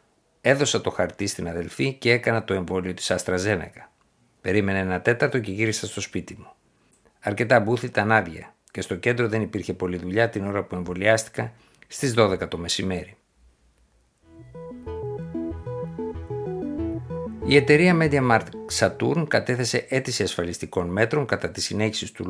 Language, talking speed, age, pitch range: Greek, 130 wpm, 60-79, 90-120 Hz